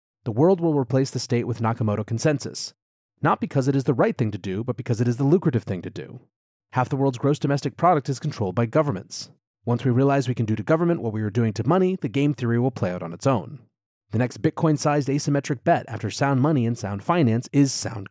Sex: male